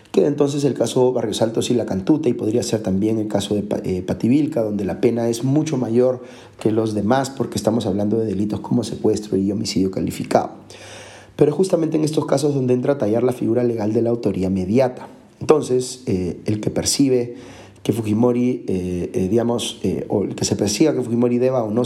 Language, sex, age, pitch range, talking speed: Spanish, male, 40-59, 105-125 Hz, 205 wpm